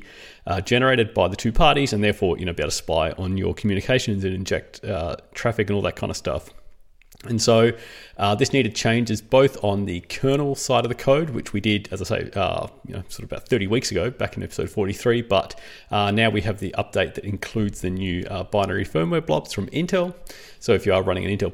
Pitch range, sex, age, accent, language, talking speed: 95-130 Hz, male, 30-49, Australian, English, 235 wpm